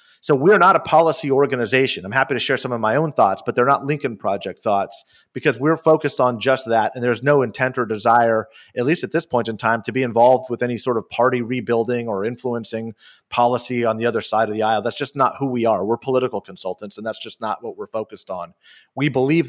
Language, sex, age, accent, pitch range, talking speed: English, male, 40-59, American, 115-135 Hz, 240 wpm